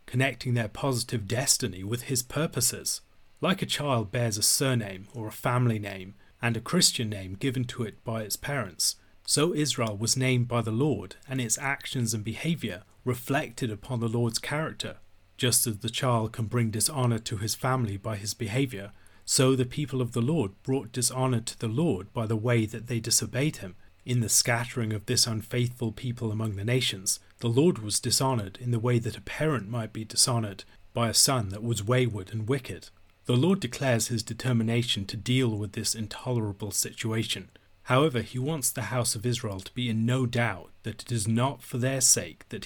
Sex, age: male, 40-59